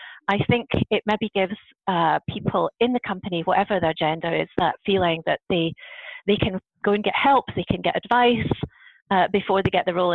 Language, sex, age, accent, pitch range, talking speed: English, female, 30-49, British, 175-210 Hz, 200 wpm